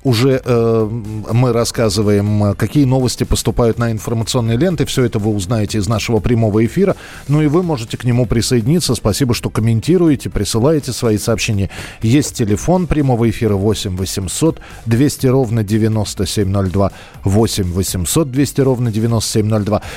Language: Russian